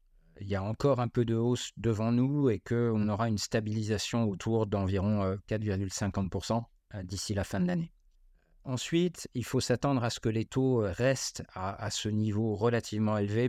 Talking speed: 175 wpm